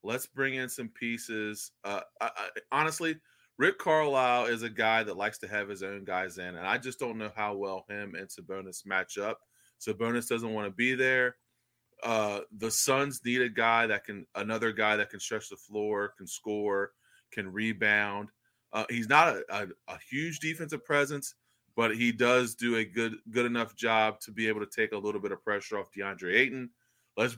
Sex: male